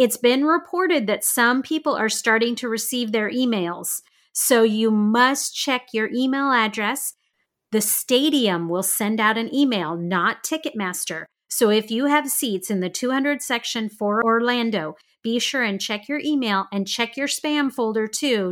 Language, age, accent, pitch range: English, 30-49, American, 210-260 Hz